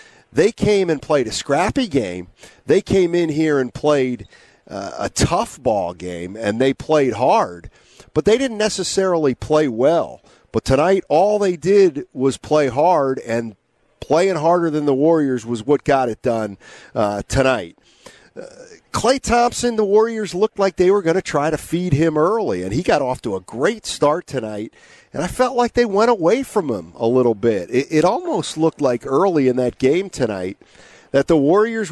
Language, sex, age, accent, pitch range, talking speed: English, male, 40-59, American, 125-170 Hz, 185 wpm